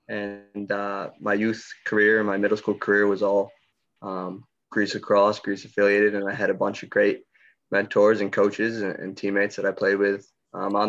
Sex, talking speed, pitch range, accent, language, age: male, 200 wpm, 100-105 Hz, American, English, 20-39